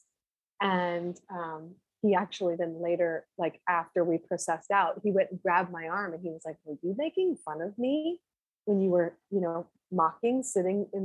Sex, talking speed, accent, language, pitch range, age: female, 190 wpm, American, English, 175-220 Hz, 20-39